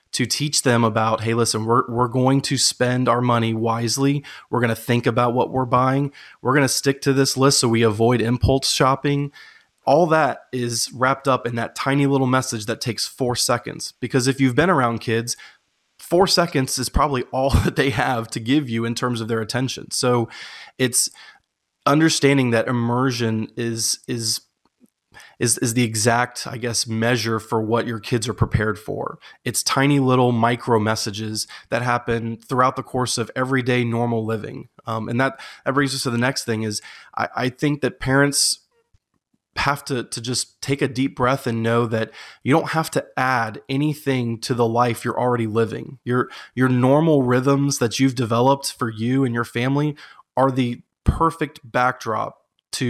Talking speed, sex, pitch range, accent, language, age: 185 wpm, male, 115-135 Hz, American, English, 20-39